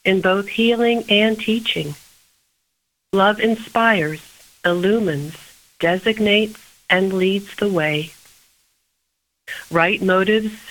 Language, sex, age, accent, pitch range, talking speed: English, female, 50-69, American, 160-220 Hz, 85 wpm